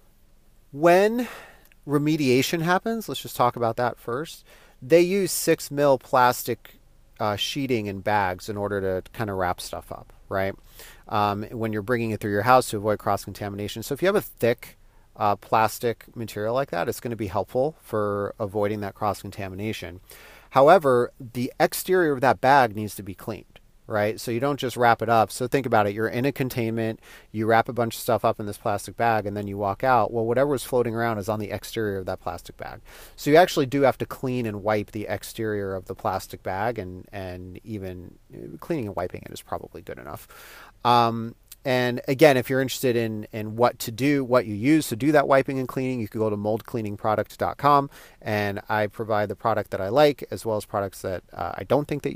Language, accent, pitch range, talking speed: English, American, 105-125 Hz, 210 wpm